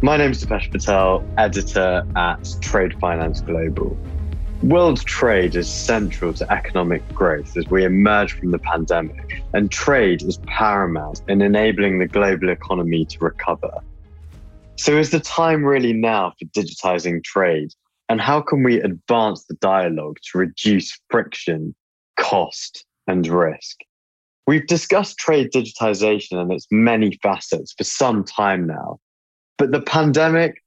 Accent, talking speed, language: British, 140 wpm, English